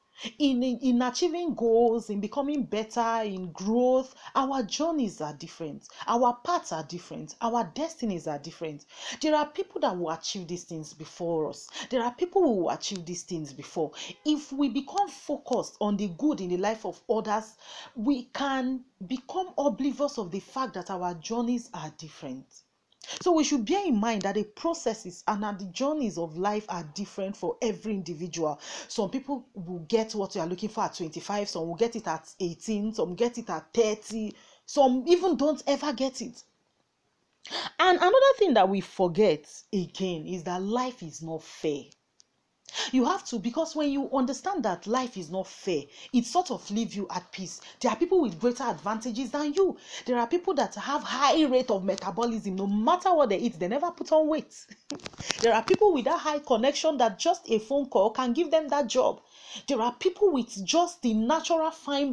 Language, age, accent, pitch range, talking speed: English, 40-59, Nigerian, 195-285 Hz, 190 wpm